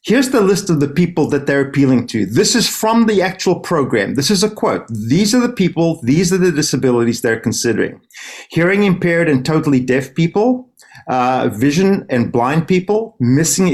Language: English